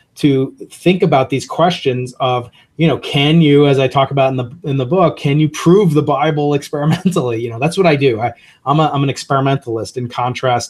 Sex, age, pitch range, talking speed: male, 30-49, 125-150 Hz, 220 wpm